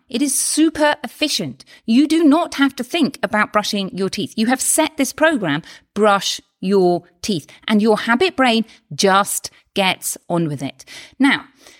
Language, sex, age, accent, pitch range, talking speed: English, female, 40-59, British, 180-260 Hz, 165 wpm